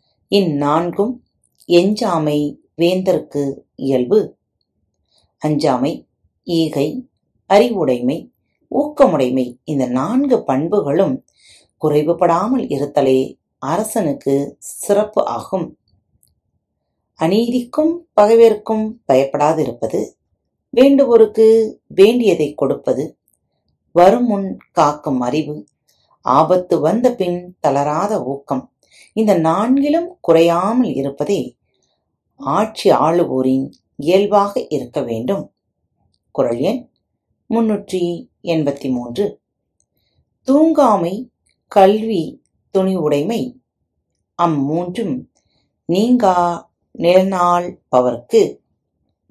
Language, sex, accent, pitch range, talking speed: Tamil, female, native, 145-220 Hz, 50 wpm